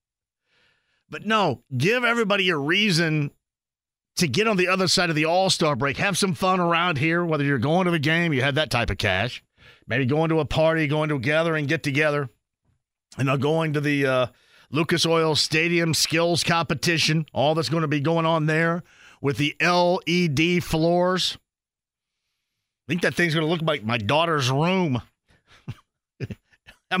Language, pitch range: English, 145-180 Hz